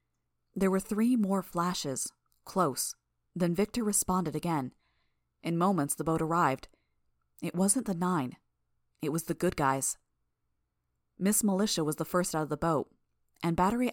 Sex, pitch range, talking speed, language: female, 135-180 Hz, 150 wpm, English